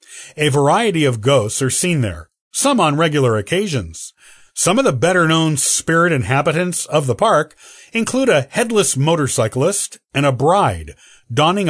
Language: English